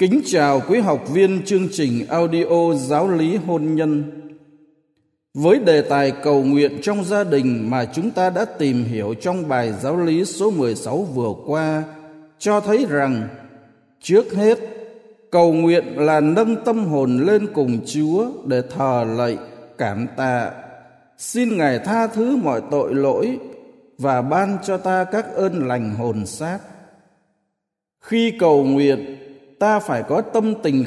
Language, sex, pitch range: Vietnamese, male, 135-195 Hz